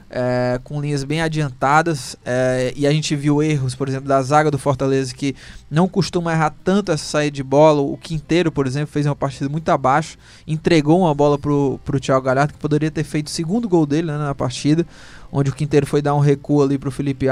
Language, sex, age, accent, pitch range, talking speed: Portuguese, male, 20-39, Brazilian, 140-160 Hz, 210 wpm